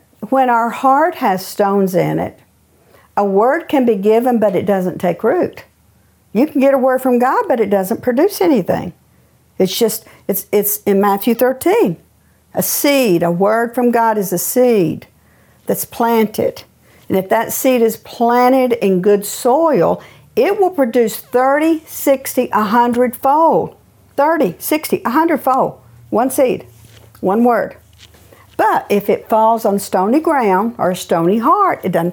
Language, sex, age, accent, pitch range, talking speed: English, female, 50-69, American, 185-255 Hz, 155 wpm